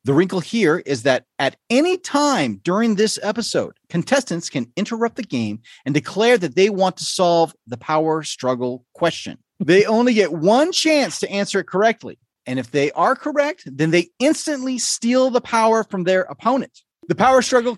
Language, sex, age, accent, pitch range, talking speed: English, male, 30-49, American, 140-235 Hz, 180 wpm